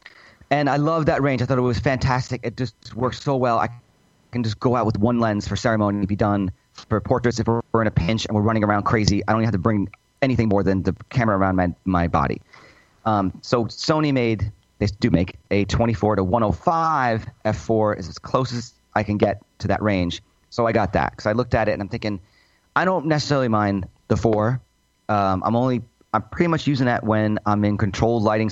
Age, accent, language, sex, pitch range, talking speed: 30-49, American, English, male, 95-120 Hz, 230 wpm